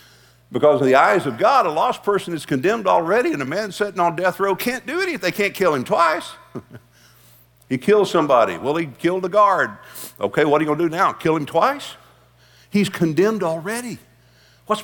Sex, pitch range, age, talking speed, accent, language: male, 140-200 Hz, 50-69, 200 wpm, American, English